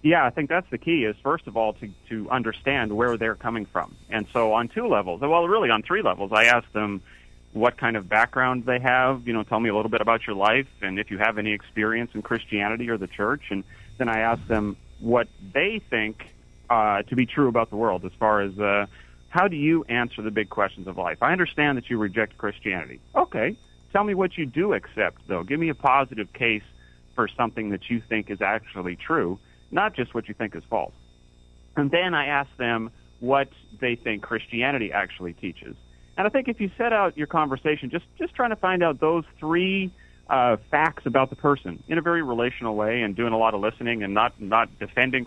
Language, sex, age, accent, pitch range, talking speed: English, male, 30-49, American, 105-135 Hz, 220 wpm